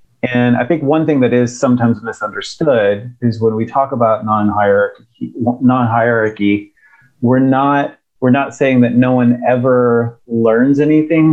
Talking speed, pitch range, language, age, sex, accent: 130 wpm, 110-135 Hz, English, 30-49, male, American